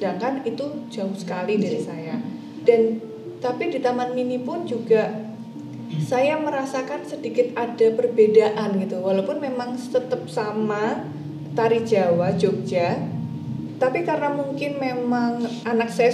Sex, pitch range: female, 195-245 Hz